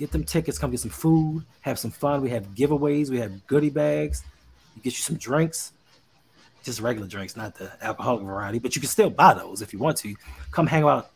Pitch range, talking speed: 120-160 Hz, 220 wpm